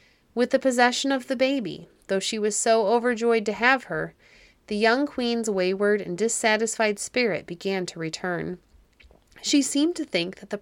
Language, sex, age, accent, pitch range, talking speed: English, female, 30-49, American, 185-245 Hz, 170 wpm